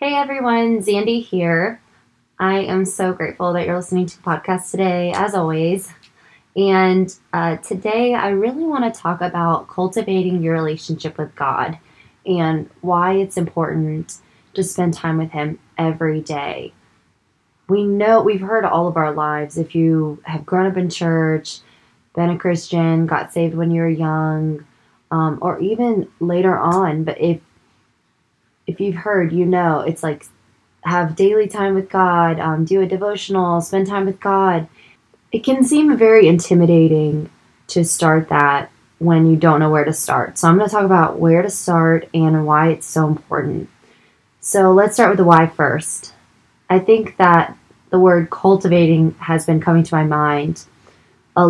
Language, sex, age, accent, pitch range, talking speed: English, female, 20-39, American, 160-190 Hz, 165 wpm